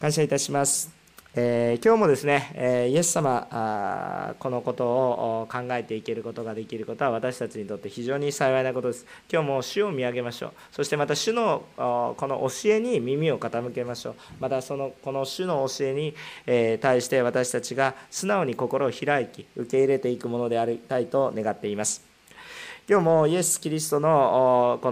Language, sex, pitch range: Japanese, male, 120-150 Hz